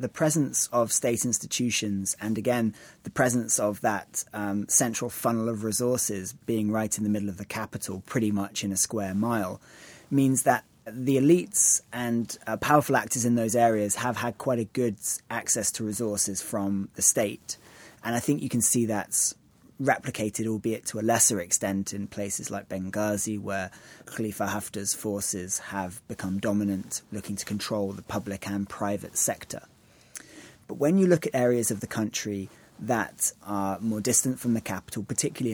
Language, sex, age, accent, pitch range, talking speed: English, male, 30-49, British, 100-120 Hz, 170 wpm